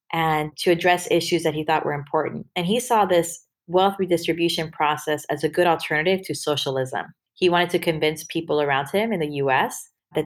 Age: 30-49